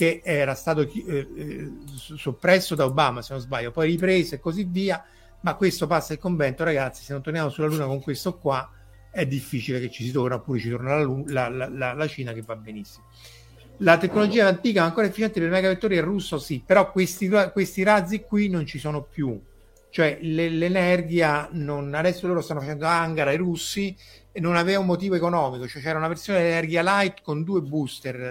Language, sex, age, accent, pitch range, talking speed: Italian, male, 50-69, native, 130-175 Hz, 190 wpm